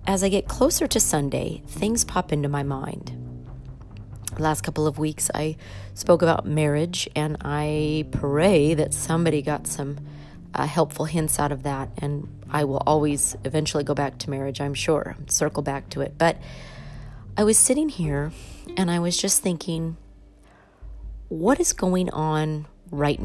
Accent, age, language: American, 40-59, English